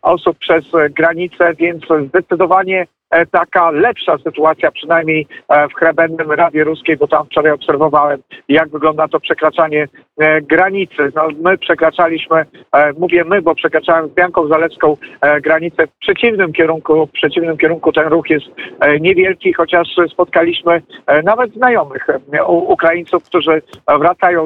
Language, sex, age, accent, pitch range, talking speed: Polish, male, 50-69, native, 155-180 Hz, 125 wpm